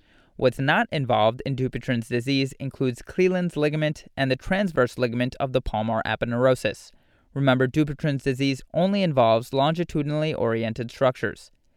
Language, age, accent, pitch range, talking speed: English, 30-49, American, 125-150 Hz, 120 wpm